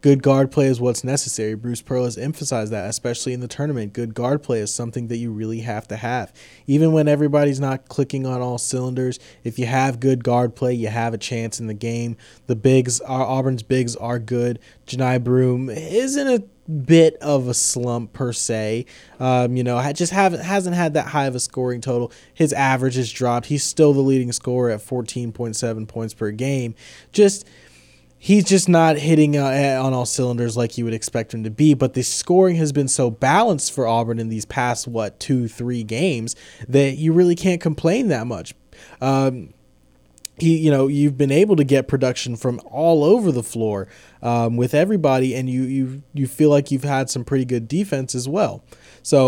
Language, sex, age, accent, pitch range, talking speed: English, male, 20-39, American, 120-145 Hz, 200 wpm